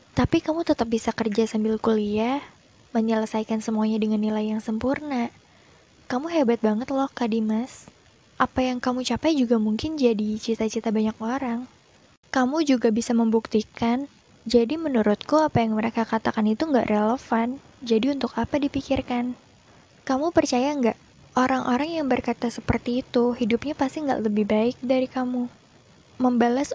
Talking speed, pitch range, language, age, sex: 135 wpm, 225-265 Hz, Indonesian, 20-39, female